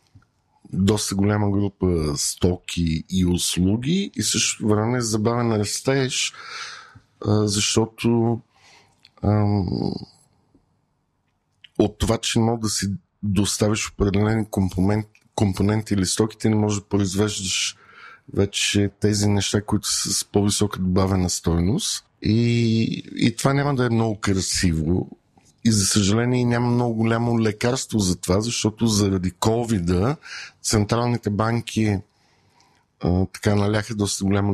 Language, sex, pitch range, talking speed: Bulgarian, male, 95-110 Hz, 120 wpm